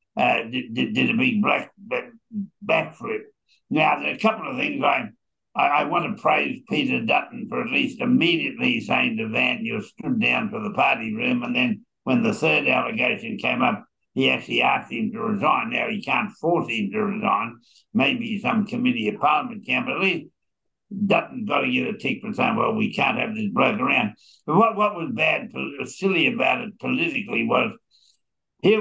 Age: 60-79